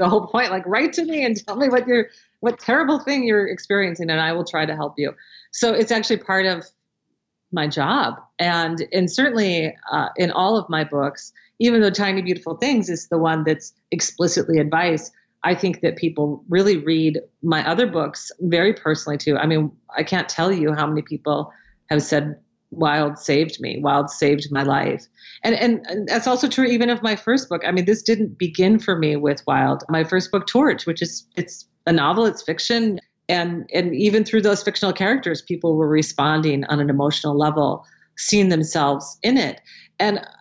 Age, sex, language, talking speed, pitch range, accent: 40-59, female, English, 195 wpm, 160-215 Hz, American